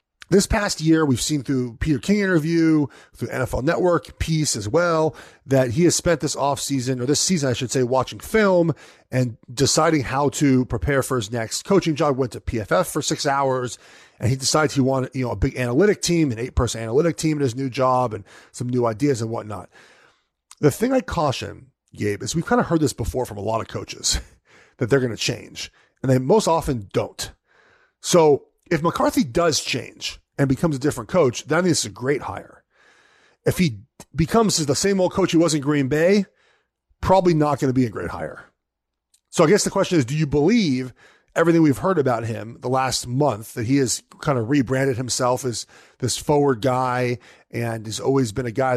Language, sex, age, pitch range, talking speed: English, male, 30-49, 120-160 Hz, 205 wpm